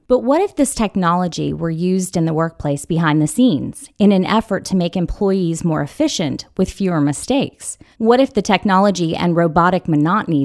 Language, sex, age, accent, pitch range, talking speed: English, female, 30-49, American, 160-205 Hz, 180 wpm